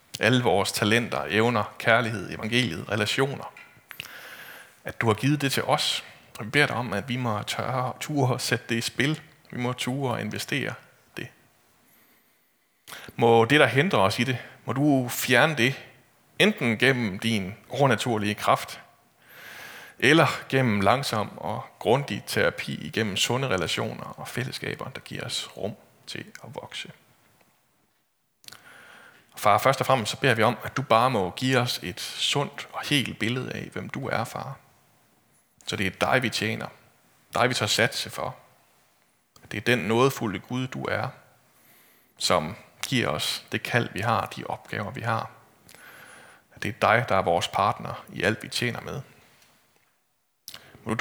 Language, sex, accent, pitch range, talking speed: Danish, male, native, 110-135 Hz, 155 wpm